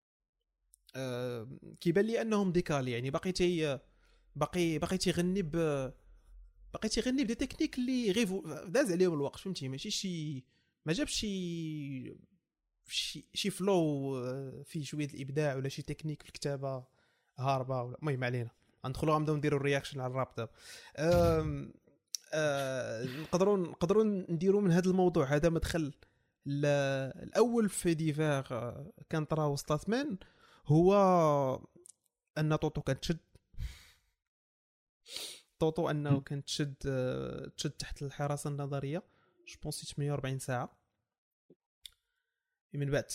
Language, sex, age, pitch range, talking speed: Arabic, male, 20-39, 130-165 Hz, 100 wpm